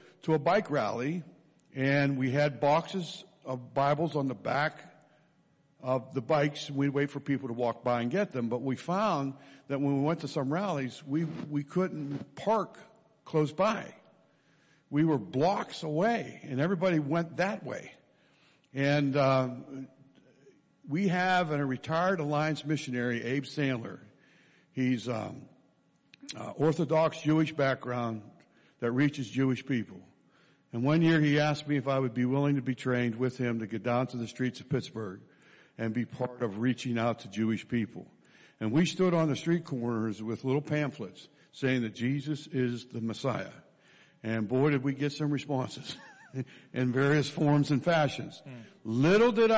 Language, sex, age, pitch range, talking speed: English, male, 60-79, 125-155 Hz, 165 wpm